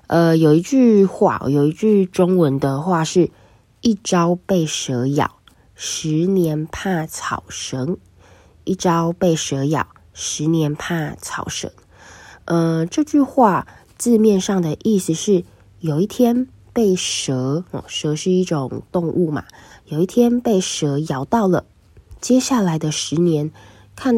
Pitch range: 140-195 Hz